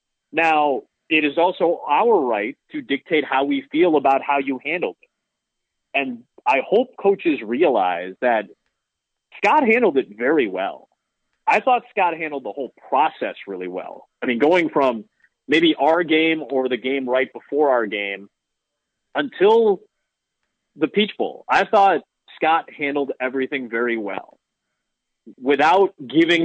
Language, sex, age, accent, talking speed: English, male, 30-49, American, 145 wpm